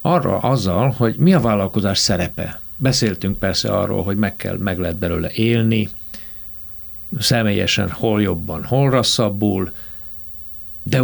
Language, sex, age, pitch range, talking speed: Hungarian, male, 60-79, 85-115 Hz, 120 wpm